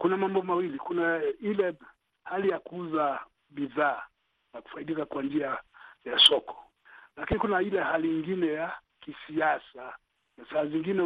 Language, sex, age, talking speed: Swahili, male, 50-69, 135 wpm